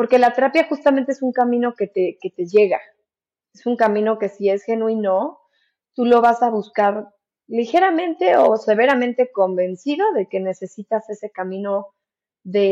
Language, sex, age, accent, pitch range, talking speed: Spanish, female, 20-39, Mexican, 200-260 Hz, 160 wpm